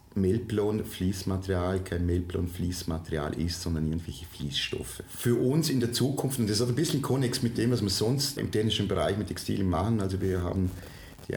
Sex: male